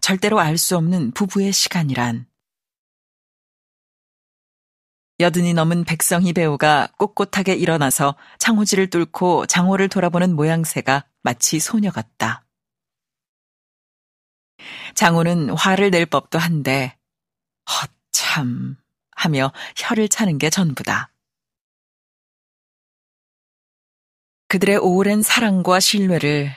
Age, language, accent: 40-59, Korean, native